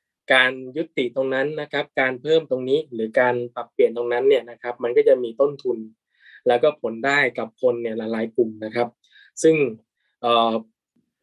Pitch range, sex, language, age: 120-180 Hz, male, Thai, 20-39